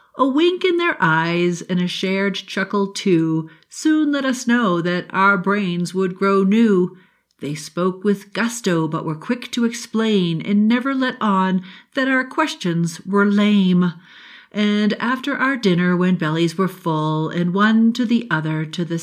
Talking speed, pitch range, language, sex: 165 wpm, 160-215 Hz, English, female